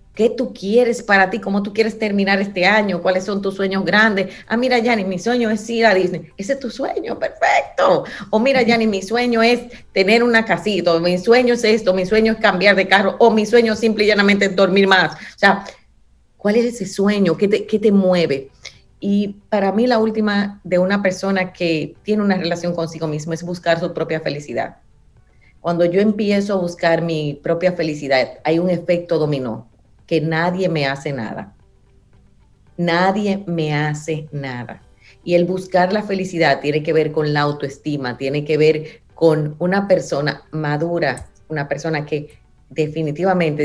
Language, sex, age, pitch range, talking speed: Spanish, female, 30-49, 155-205 Hz, 180 wpm